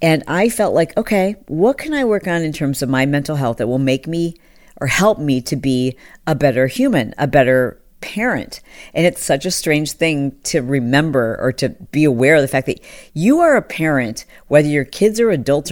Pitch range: 135-185 Hz